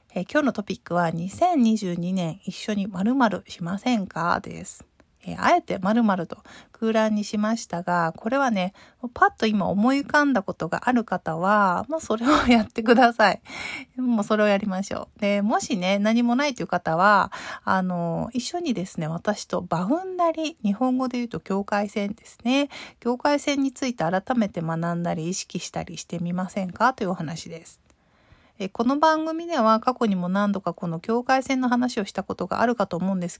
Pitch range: 185-245 Hz